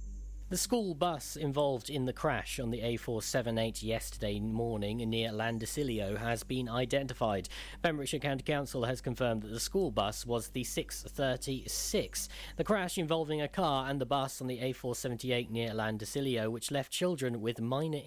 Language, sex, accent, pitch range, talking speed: English, male, British, 115-145 Hz, 155 wpm